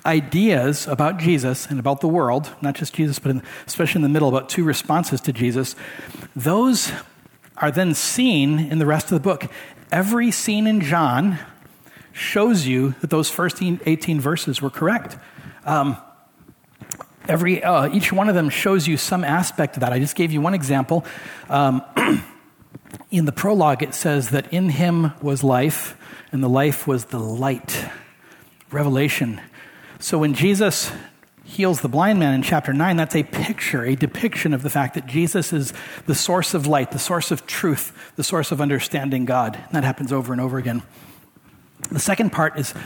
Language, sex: English, male